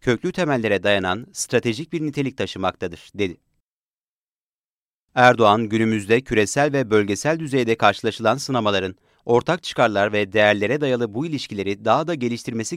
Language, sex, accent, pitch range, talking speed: Turkish, male, native, 105-140 Hz, 120 wpm